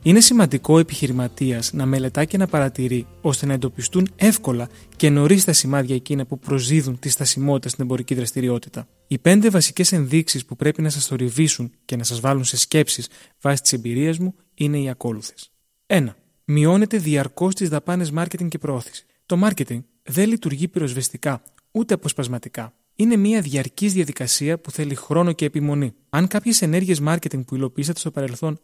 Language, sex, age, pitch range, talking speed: Greek, male, 30-49, 130-170 Hz, 165 wpm